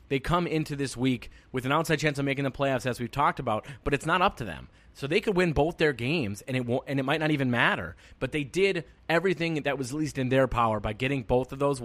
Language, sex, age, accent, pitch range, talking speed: English, male, 30-49, American, 115-145 Hz, 280 wpm